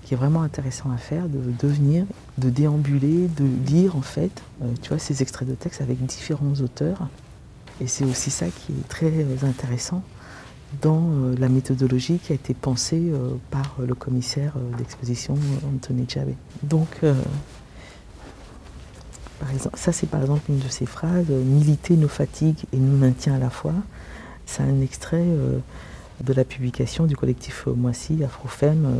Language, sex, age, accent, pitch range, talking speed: French, female, 50-69, French, 125-150 Hz, 170 wpm